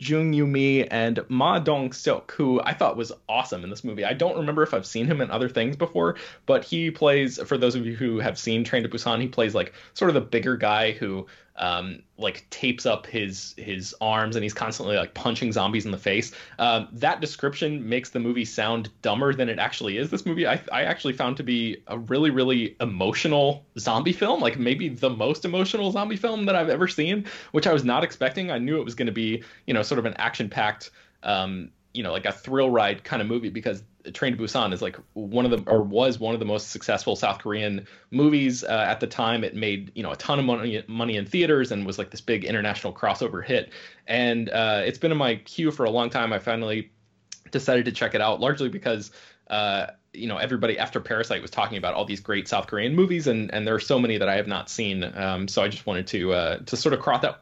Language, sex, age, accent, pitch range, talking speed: English, male, 20-39, American, 110-145 Hz, 240 wpm